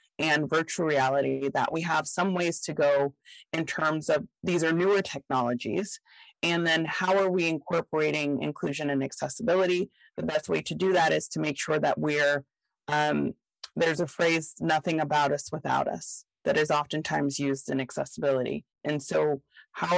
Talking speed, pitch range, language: 170 wpm, 145-170 Hz, English